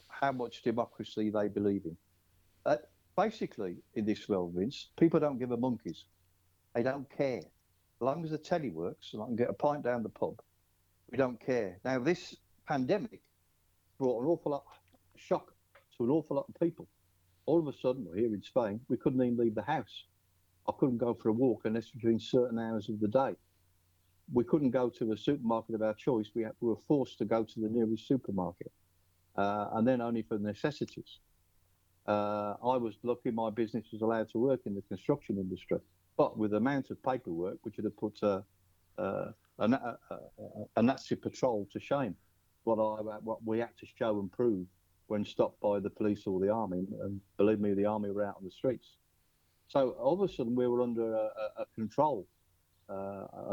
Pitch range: 95-120 Hz